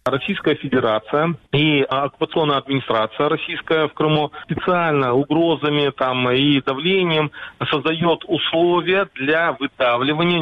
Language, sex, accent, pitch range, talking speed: Russian, male, native, 135-160 Hz, 100 wpm